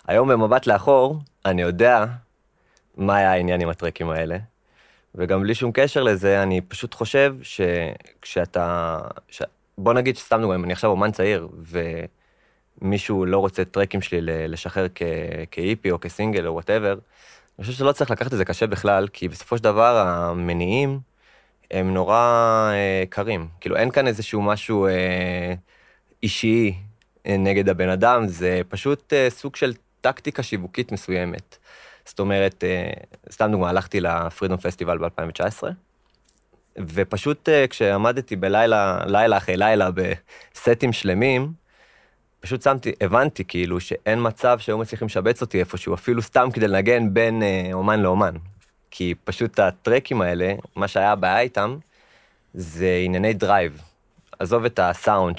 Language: Hebrew